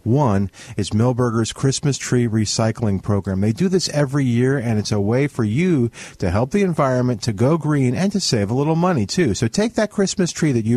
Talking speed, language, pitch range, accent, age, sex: 215 wpm, English, 115-175 Hz, American, 50-69, male